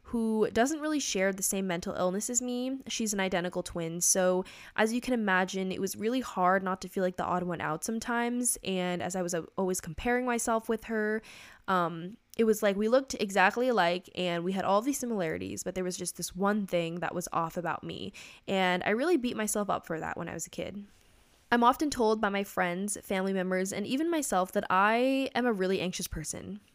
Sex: female